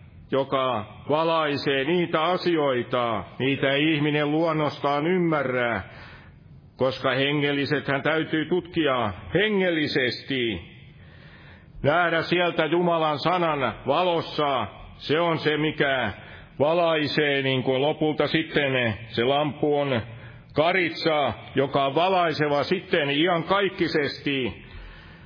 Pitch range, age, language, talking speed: 130-165 Hz, 60-79, Finnish, 85 wpm